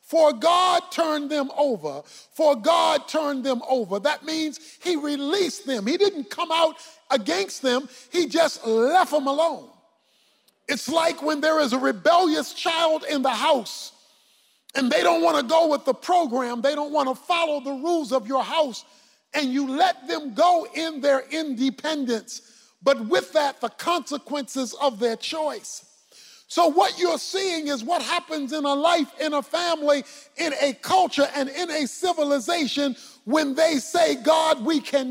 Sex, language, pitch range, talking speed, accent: male, English, 265-330 Hz, 165 wpm, American